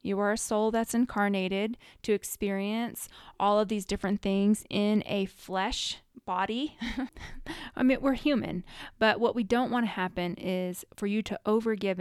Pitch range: 185-220 Hz